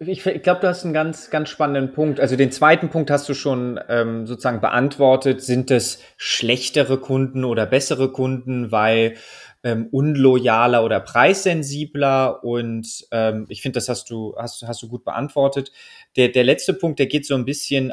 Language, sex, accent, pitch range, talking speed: German, male, German, 125-165 Hz, 175 wpm